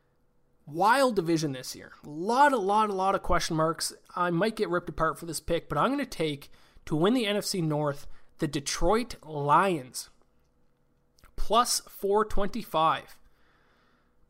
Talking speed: 150 wpm